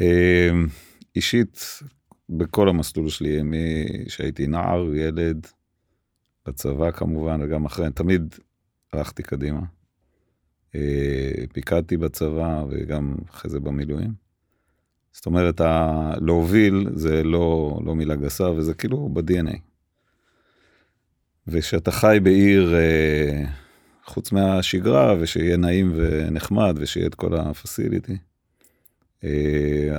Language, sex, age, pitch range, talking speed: Hebrew, male, 40-59, 75-90 Hz, 90 wpm